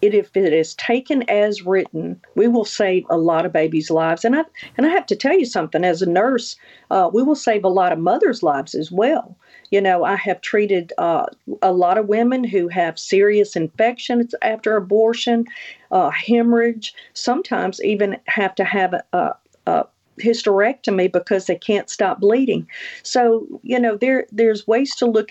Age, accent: 50-69, American